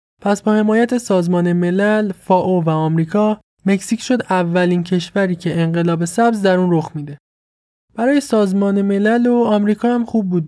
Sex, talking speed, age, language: male, 160 wpm, 20-39, Persian